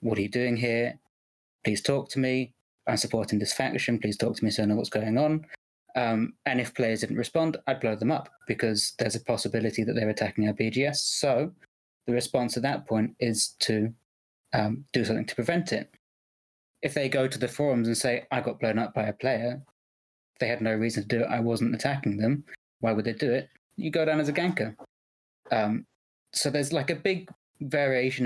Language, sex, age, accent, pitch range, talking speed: English, male, 20-39, British, 110-130 Hz, 210 wpm